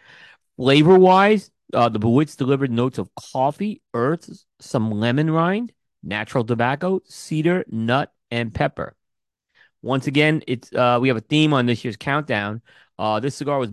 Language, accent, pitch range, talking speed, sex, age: English, American, 115-150 Hz, 150 wpm, male, 30-49